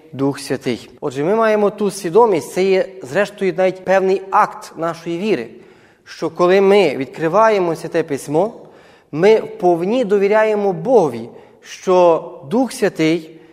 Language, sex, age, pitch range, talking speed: Ukrainian, male, 20-39, 160-210 Hz, 125 wpm